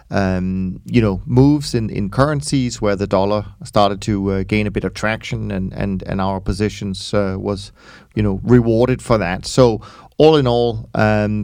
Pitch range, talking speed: 105-125 Hz, 185 wpm